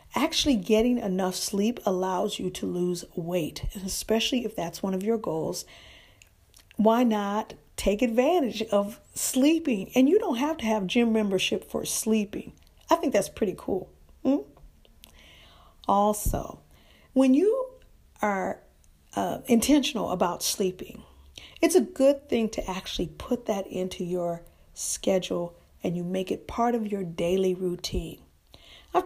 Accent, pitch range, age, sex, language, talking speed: American, 180-255 Hz, 50-69, female, English, 140 wpm